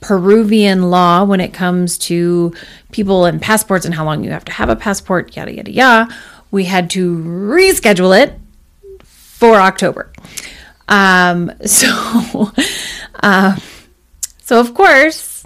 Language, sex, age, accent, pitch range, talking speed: English, female, 30-49, American, 180-215 Hz, 130 wpm